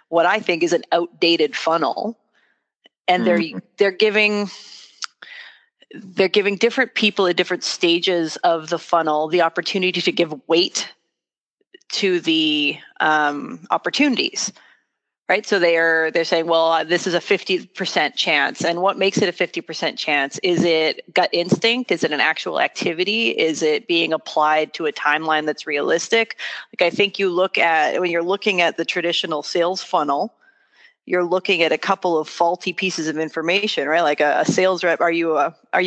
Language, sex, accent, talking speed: English, female, American, 175 wpm